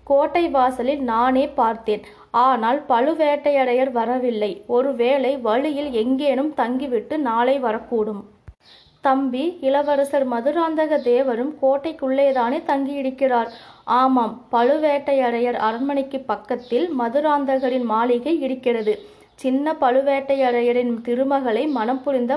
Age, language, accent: 20-39, Tamil, native